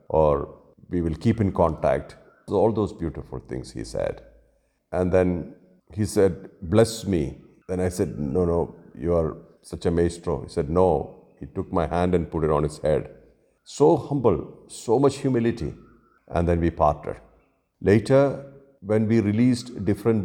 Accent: Indian